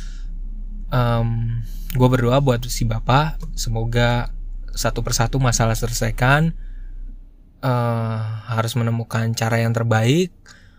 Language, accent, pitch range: Indonesian, native, 115-125 Hz